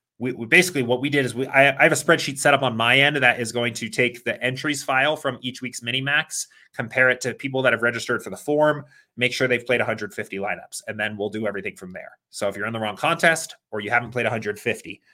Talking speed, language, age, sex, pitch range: 255 wpm, English, 30-49, male, 115-150 Hz